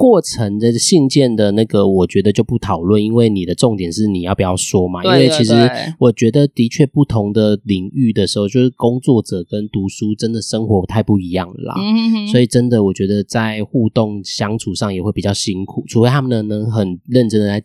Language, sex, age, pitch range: Chinese, male, 20-39, 100-125 Hz